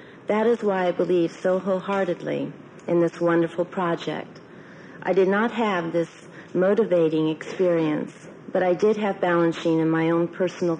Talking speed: 150 wpm